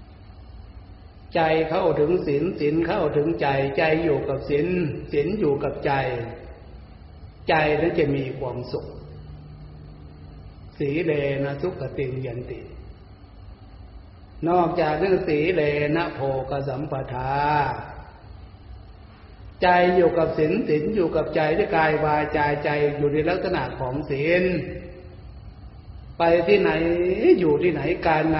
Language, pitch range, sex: Thai, 100-155 Hz, male